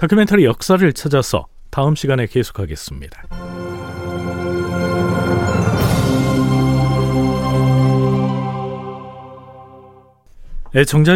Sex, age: male, 40-59